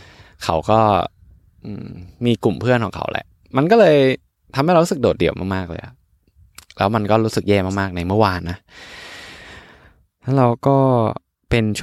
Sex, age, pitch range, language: male, 20-39, 90-110 Hz, Thai